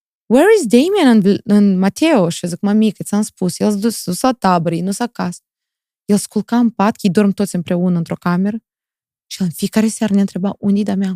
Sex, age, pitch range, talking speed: female, 20-39, 185-230 Hz, 215 wpm